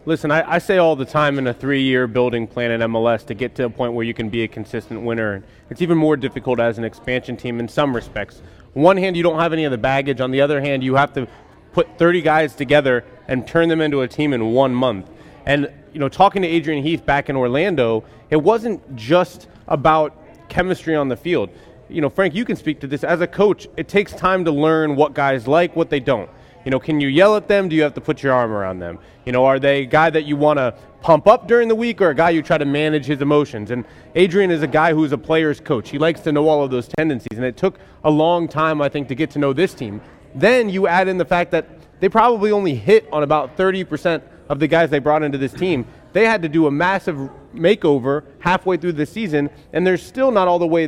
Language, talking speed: English, 255 wpm